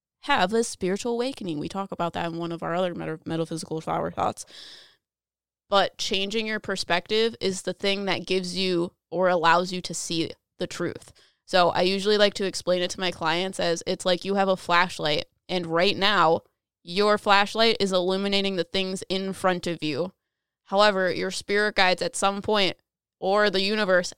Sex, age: female, 20-39